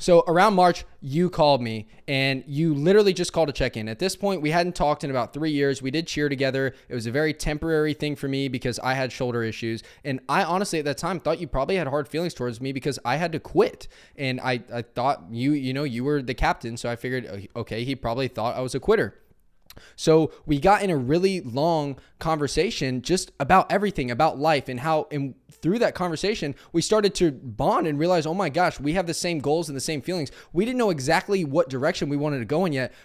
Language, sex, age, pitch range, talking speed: English, male, 20-39, 125-165 Hz, 235 wpm